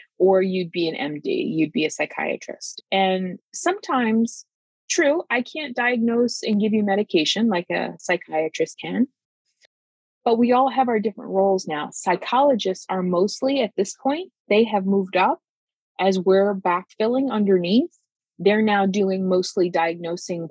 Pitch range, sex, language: 175-215 Hz, female, English